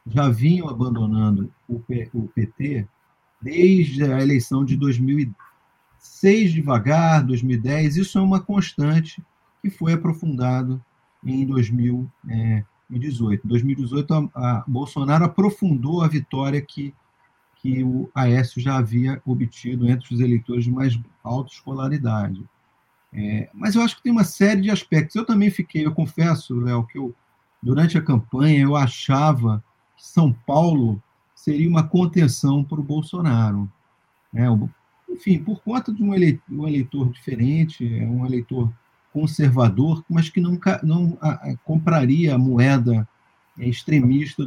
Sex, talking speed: male, 120 wpm